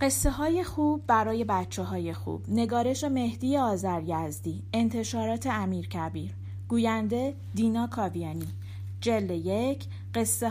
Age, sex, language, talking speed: 40-59, female, Persian, 115 wpm